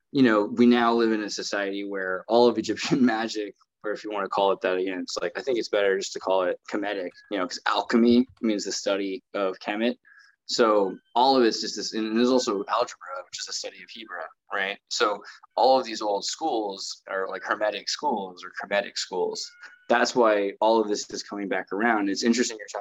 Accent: American